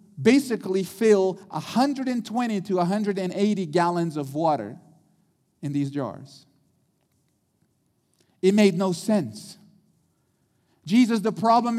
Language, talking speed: English, 90 wpm